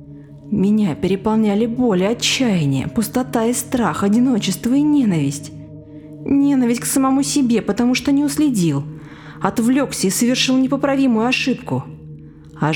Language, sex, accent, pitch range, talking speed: Russian, female, native, 150-220 Hz, 115 wpm